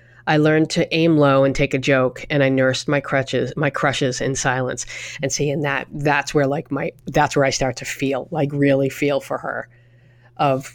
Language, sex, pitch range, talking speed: English, female, 135-155 Hz, 205 wpm